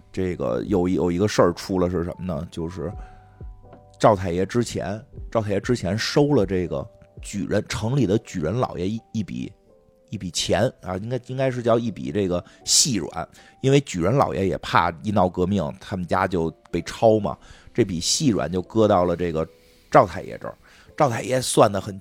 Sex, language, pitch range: male, Chinese, 95-120 Hz